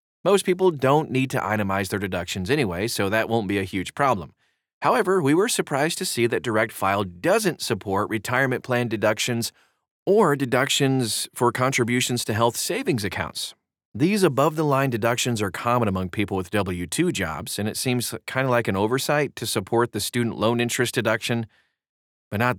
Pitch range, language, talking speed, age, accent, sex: 100-135 Hz, English, 175 wpm, 30-49, American, male